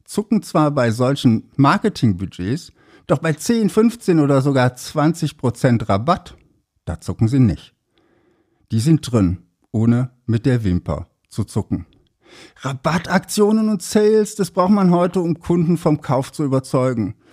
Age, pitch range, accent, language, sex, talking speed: 60-79, 110-165 Hz, German, German, male, 135 wpm